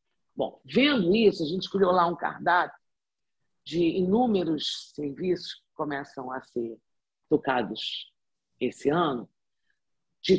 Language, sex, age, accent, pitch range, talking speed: Portuguese, female, 50-69, Brazilian, 145-200 Hz, 115 wpm